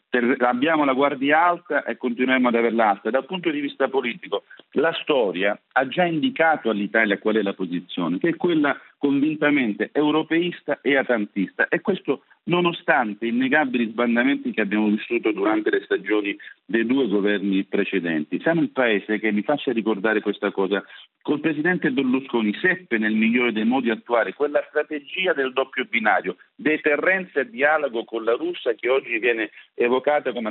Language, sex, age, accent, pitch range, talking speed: Italian, male, 50-69, native, 115-165 Hz, 95 wpm